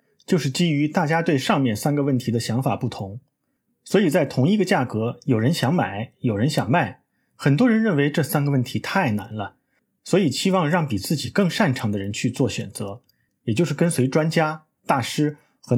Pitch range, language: 120-165 Hz, Chinese